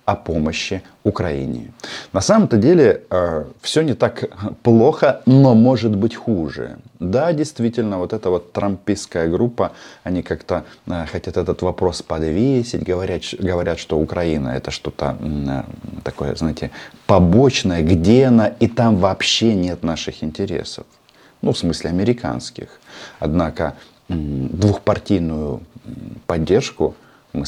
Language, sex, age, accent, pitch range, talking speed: Russian, male, 30-49, native, 85-115 Hz, 120 wpm